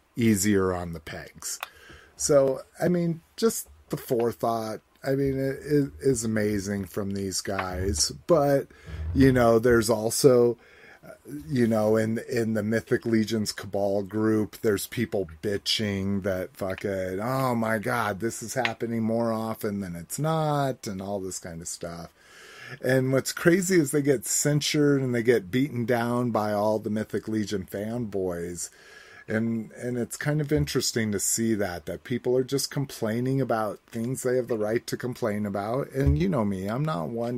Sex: male